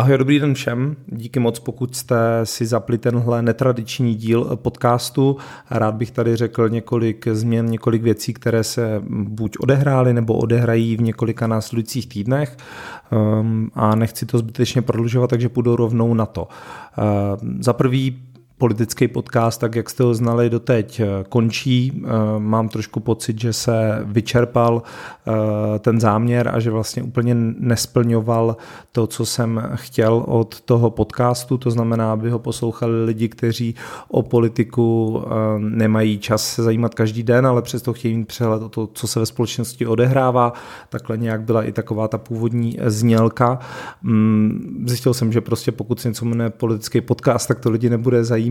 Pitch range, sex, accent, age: 110-120 Hz, male, native, 40-59